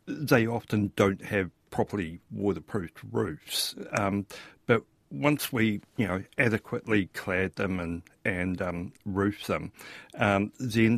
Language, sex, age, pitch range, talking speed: English, male, 60-79, 100-125 Hz, 125 wpm